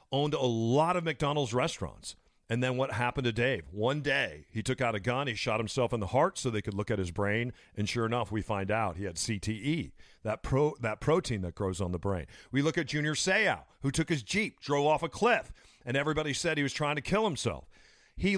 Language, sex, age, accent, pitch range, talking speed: English, male, 40-59, American, 110-160 Hz, 240 wpm